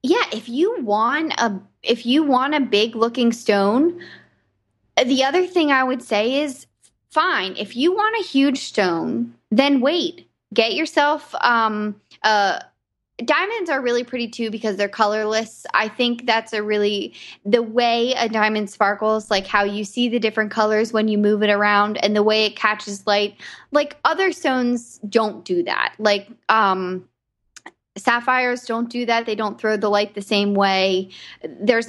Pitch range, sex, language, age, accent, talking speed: 205-255 Hz, female, English, 20-39, American, 165 wpm